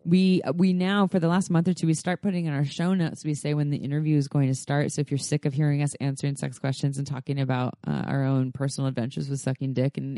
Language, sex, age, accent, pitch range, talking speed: English, female, 20-39, American, 140-180 Hz, 275 wpm